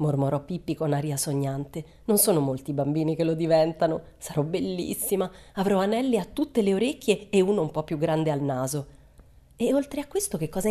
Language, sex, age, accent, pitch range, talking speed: Italian, female, 30-49, native, 150-215 Hz, 195 wpm